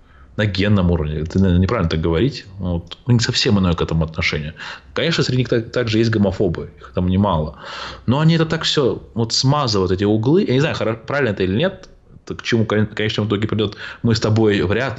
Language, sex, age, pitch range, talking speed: Russian, male, 20-39, 85-115 Hz, 210 wpm